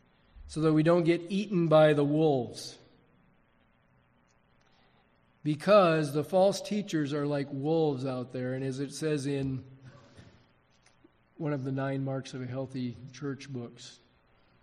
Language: English